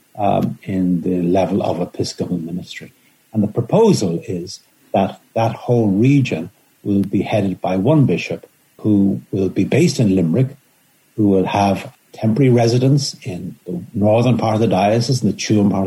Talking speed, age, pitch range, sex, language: 165 wpm, 70-89, 100-135 Hz, male, English